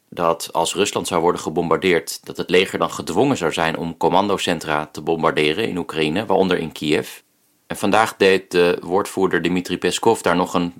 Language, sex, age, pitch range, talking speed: Dutch, male, 40-59, 80-95 Hz, 180 wpm